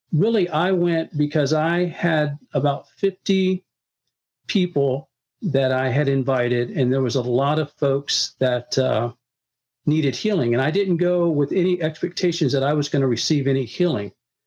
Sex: male